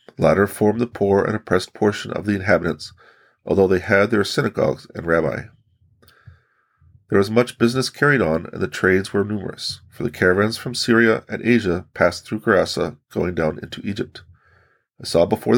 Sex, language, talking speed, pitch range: male, English, 175 wpm, 90-115 Hz